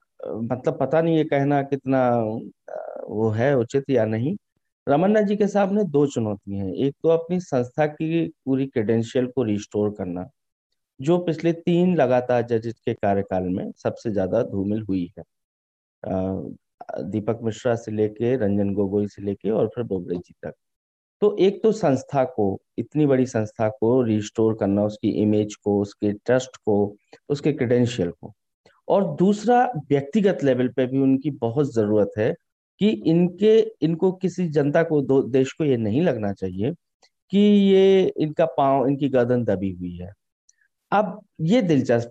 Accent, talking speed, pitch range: native, 155 wpm, 110-160 Hz